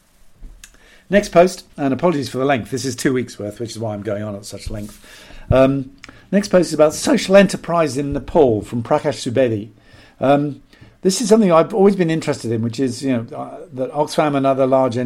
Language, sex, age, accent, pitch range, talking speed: English, male, 50-69, British, 120-155 Hz, 205 wpm